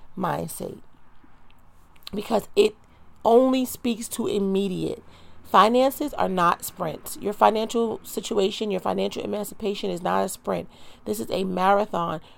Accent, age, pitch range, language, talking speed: American, 40-59, 195-220 Hz, English, 120 wpm